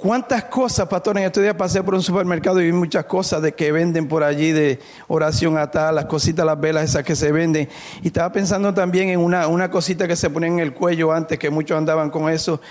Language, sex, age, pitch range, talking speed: Spanish, male, 50-69, 160-195 Hz, 240 wpm